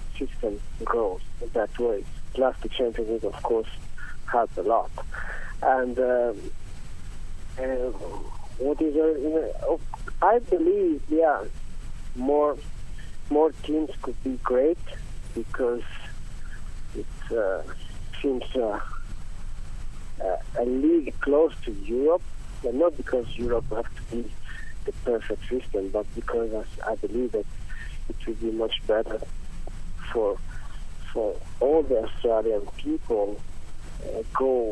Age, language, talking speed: 50-69, English, 115 wpm